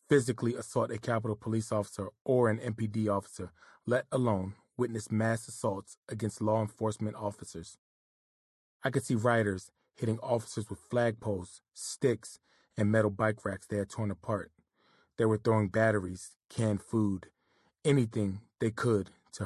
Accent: American